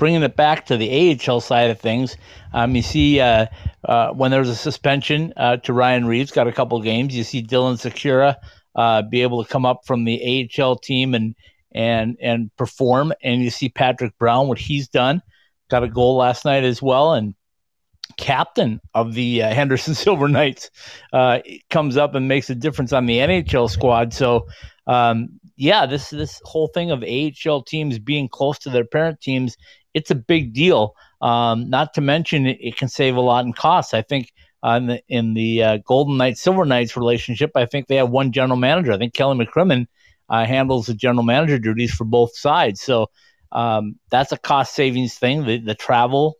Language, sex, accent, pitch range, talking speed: English, male, American, 115-140 Hz, 195 wpm